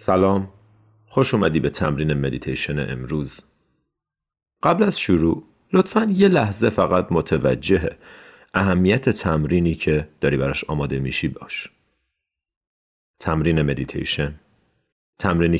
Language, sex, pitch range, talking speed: Persian, male, 75-105 Hz, 100 wpm